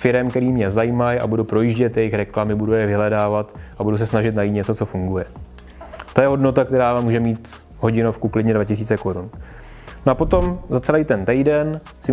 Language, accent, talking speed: Czech, native, 190 wpm